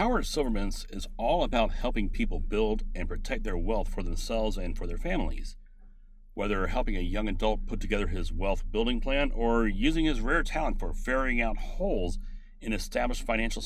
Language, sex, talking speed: English, male, 180 wpm